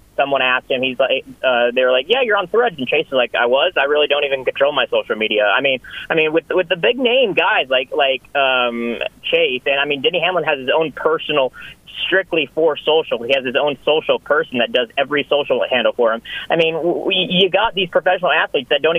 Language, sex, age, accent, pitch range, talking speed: English, male, 30-49, American, 135-195 Hz, 240 wpm